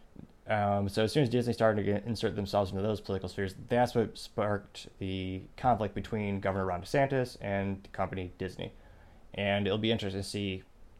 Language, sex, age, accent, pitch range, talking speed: English, male, 20-39, American, 95-115 Hz, 180 wpm